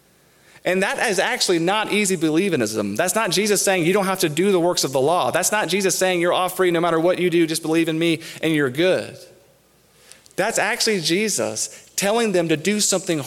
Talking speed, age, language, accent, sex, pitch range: 215 wpm, 30-49, English, American, male, 160-195 Hz